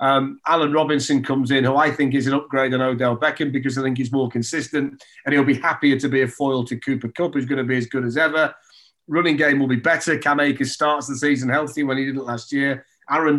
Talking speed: 255 wpm